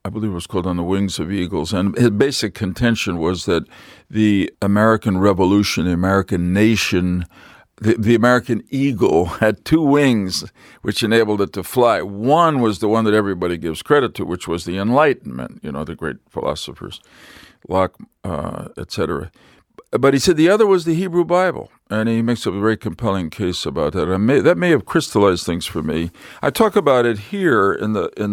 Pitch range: 95-125 Hz